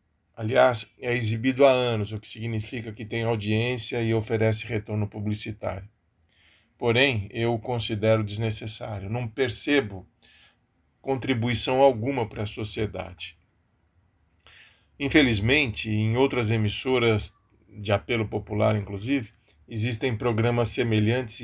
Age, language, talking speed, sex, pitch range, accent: 40-59, Portuguese, 105 wpm, male, 100-125 Hz, Brazilian